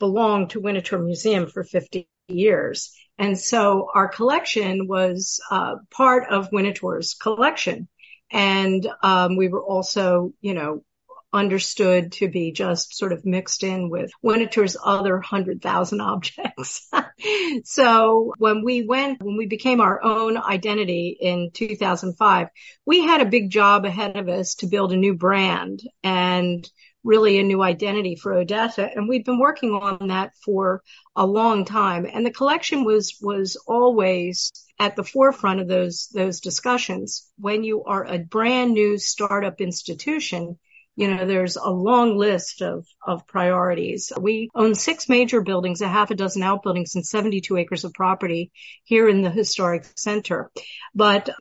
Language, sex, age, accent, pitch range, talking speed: English, female, 50-69, American, 185-225 Hz, 155 wpm